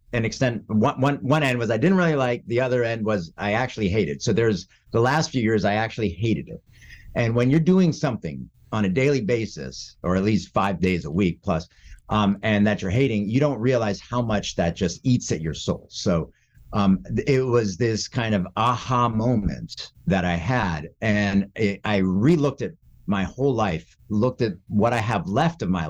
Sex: male